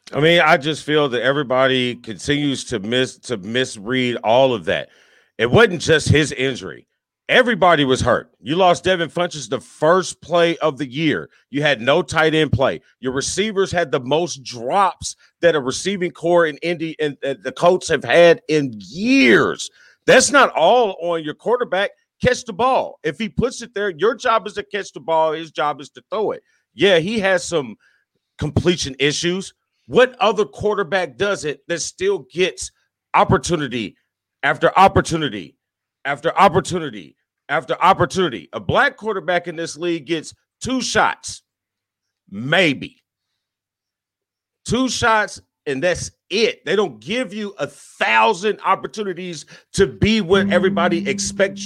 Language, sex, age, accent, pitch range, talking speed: English, male, 40-59, American, 145-200 Hz, 155 wpm